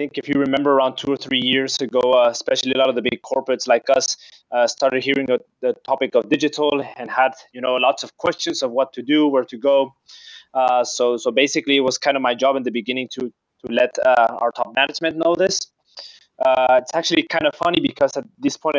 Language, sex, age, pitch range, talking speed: German, male, 20-39, 130-160 Hz, 235 wpm